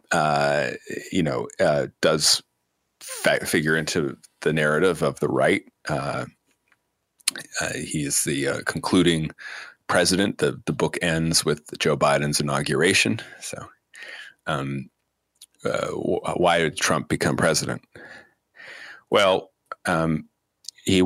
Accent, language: American, English